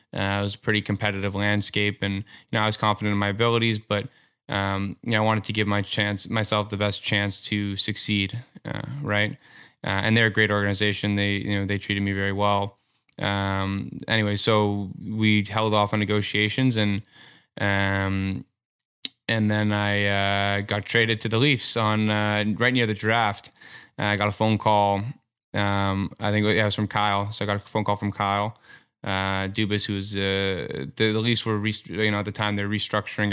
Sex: male